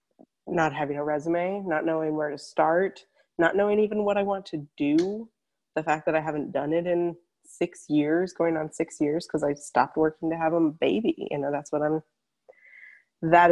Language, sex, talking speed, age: English, female, 200 wpm, 20-39